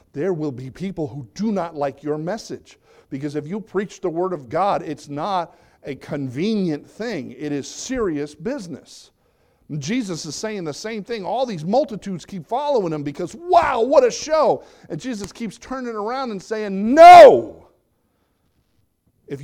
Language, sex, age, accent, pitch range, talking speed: English, male, 50-69, American, 140-210 Hz, 165 wpm